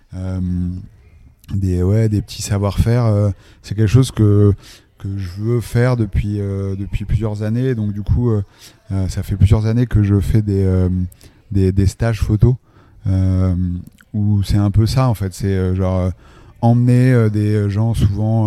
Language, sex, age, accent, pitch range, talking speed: French, male, 30-49, French, 95-110 Hz, 170 wpm